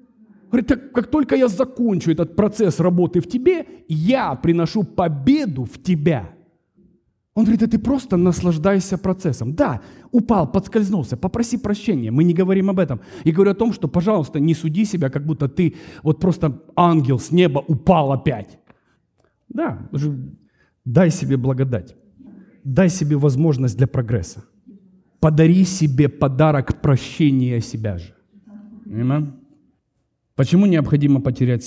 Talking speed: 135 wpm